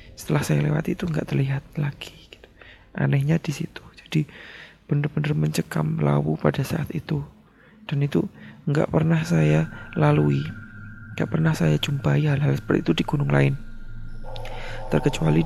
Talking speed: 130 wpm